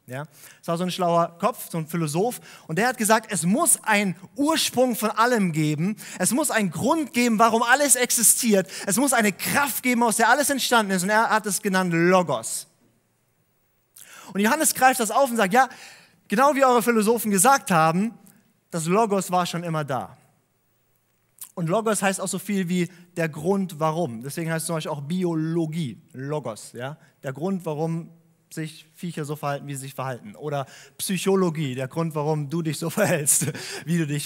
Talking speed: 185 wpm